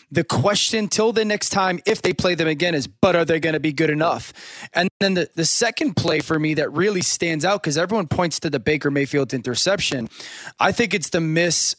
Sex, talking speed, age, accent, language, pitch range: male, 230 wpm, 20-39, American, English, 155-185 Hz